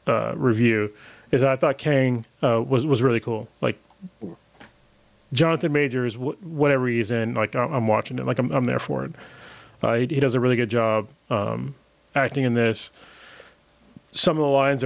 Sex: male